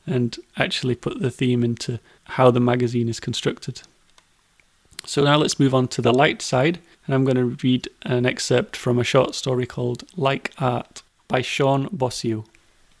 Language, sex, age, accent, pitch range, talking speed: English, male, 30-49, British, 125-145 Hz, 170 wpm